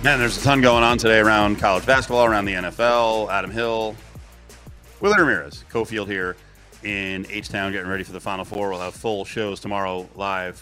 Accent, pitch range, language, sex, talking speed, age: American, 95-110 Hz, English, male, 185 wpm, 30-49